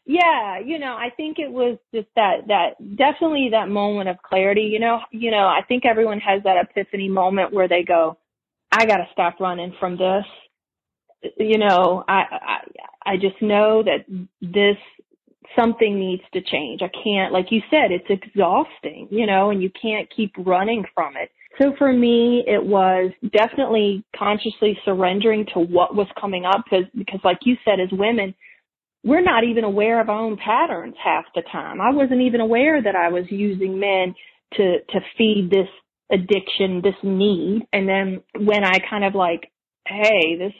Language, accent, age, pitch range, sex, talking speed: English, American, 30-49, 190-235 Hz, female, 180 wpm